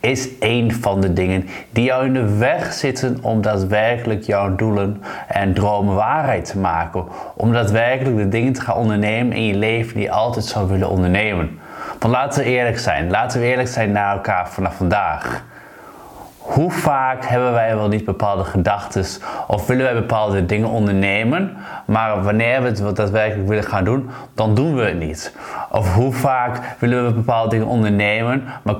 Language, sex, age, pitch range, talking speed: Dutch, male, 20-39, 100-125 Hz, 175 wpm